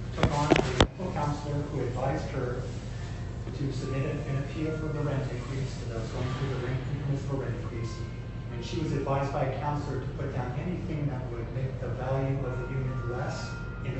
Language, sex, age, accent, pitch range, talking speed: English, male, 30-49, American, 120-140 Hz, 200 wpm